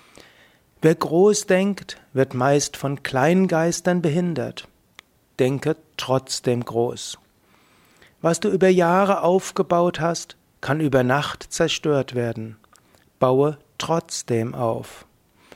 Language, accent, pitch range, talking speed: German, German, 125-175 Hz, 100 wpm